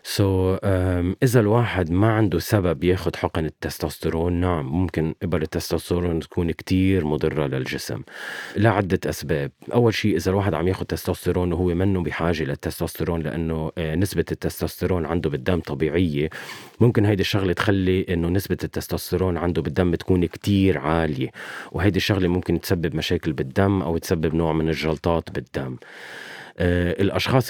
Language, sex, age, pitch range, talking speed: Arabic, male, 30-49, 85-95 Hz, 140 wpm